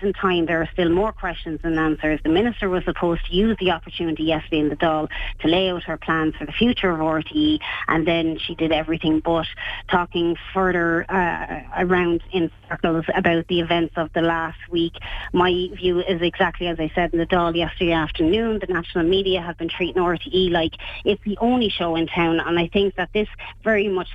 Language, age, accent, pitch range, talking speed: English, 30-49, Irish, 165-185 Hz, 205 wpm